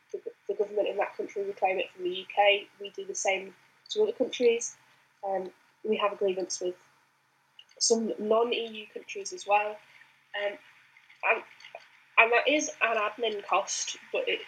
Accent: British